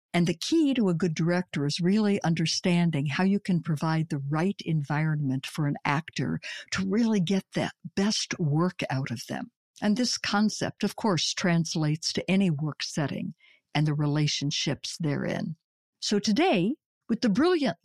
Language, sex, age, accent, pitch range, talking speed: English, female, 60-79, American, 160-215 Hz, 160 wpm